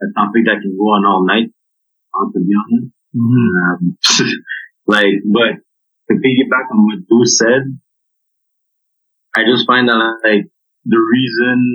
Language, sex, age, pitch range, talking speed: English, male, 30-49, 110-125 Hz, 140 wpm